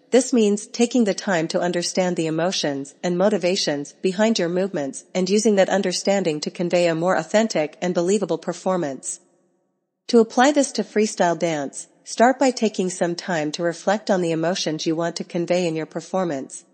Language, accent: English, American